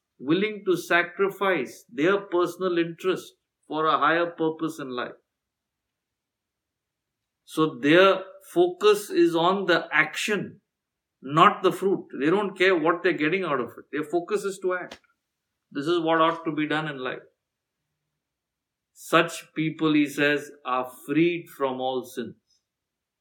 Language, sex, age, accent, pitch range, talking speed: English, male, 50-69, Indian, 135-175 Hz, 140 wpm